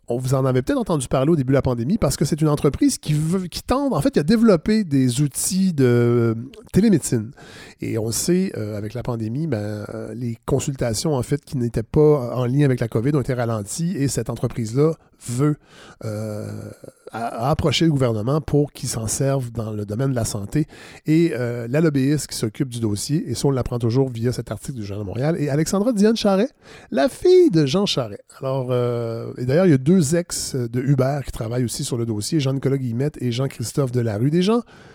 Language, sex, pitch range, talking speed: French, male, 120-155 Hz, 210 wpm